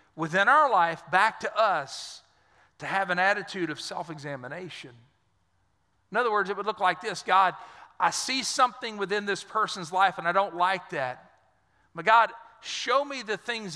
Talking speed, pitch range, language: 170 wpm, 165-225 Hz, English